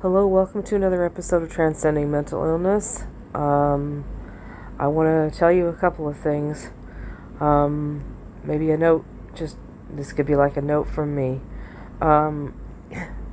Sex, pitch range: female, 130-160 Hz